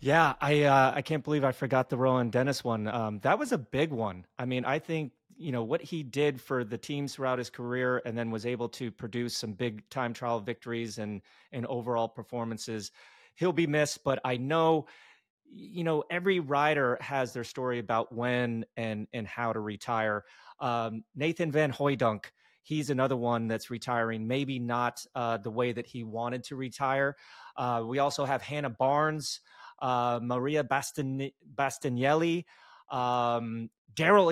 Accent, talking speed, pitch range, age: American, 170 wpm, 115-140 Hz, 30-49